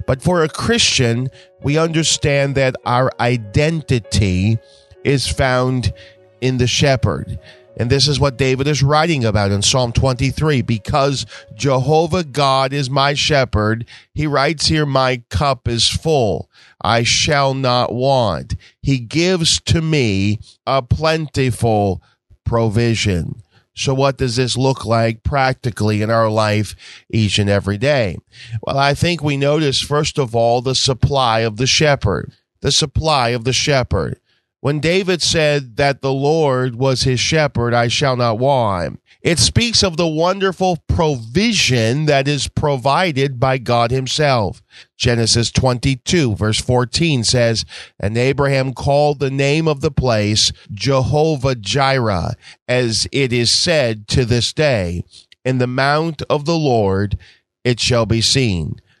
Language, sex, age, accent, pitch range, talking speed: English, male, 40-59, American, 115-140 Hz, 140 wpm